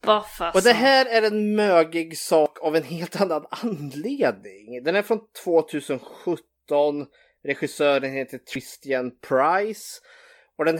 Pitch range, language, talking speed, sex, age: 120-175 Hz, Swedish, 120 wpm, male, 30-49